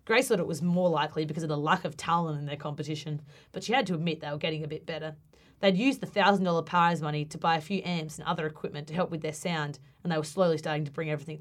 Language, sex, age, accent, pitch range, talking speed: English, female, 30-49, Australian, 155-195 Hz, 280 wpm